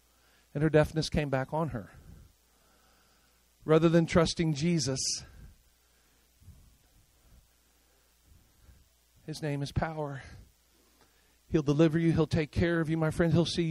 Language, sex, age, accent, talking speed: English, male, 40-59, American, 120 wpm